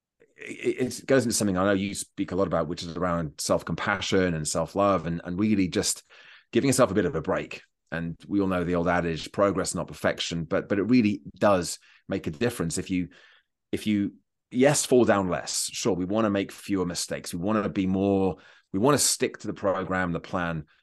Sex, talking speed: male, 220 wpm